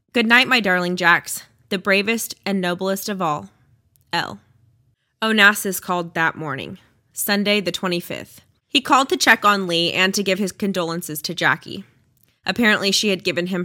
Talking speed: 165 wpm